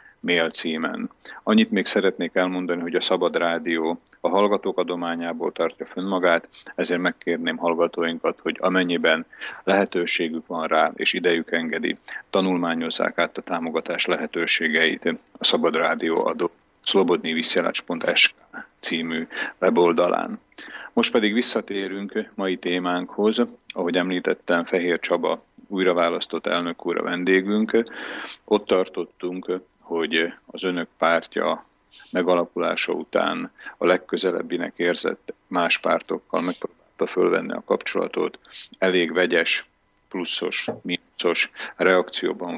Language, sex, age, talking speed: Slovak, male, 40-59, 105 wpm